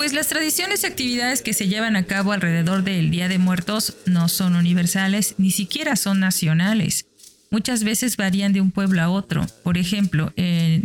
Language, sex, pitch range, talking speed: Spanish, female, 165-195 Hz, 185 wpm